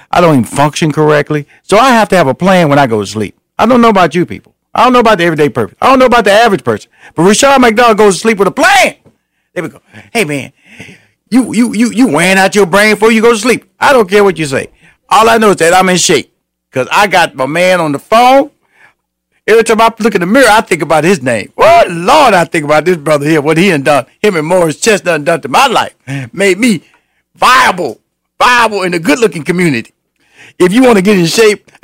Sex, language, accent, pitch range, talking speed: male, English, American, 140-225 Hz, 255 wpm